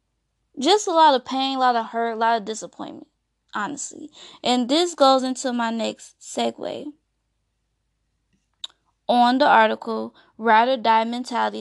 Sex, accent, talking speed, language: female, American, 145 wpm, English